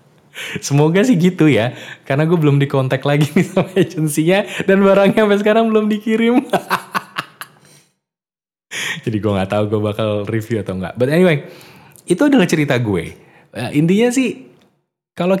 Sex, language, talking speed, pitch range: male, Indonesian, 140 wpm, 95-155 Hz